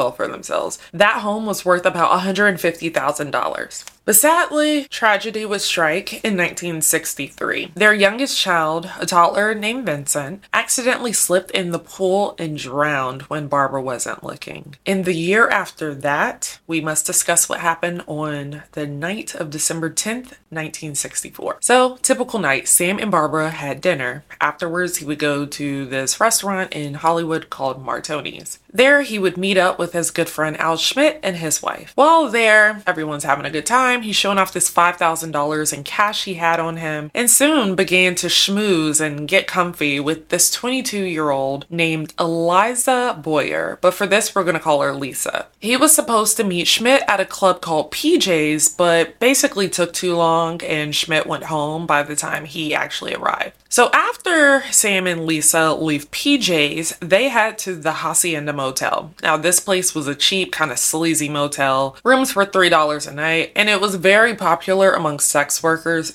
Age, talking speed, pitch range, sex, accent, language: 20-39, 170 wpm, 155-205 Hz, female, American, English